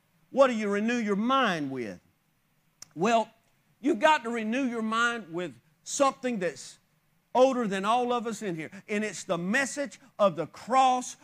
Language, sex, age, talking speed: English, male, 40-59, 165 wpm